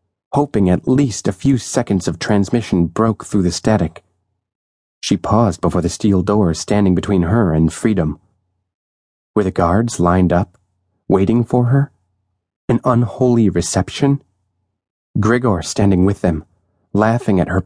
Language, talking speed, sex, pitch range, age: English, 140 wpm, male, 85-105 Hz, 30-49